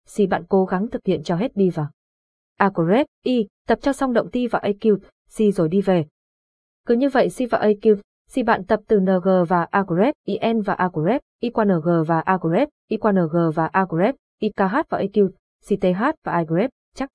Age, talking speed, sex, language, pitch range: 20-39, 205 wpm, female, Vietnamese, 185-235 Hz